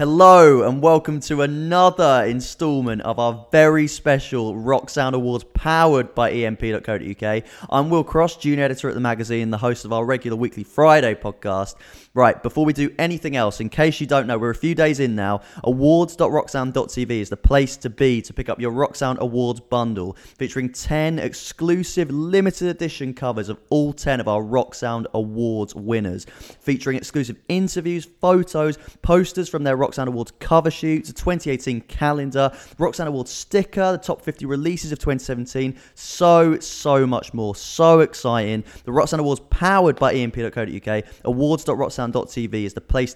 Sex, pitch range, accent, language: male, 115-150 Hz, British, English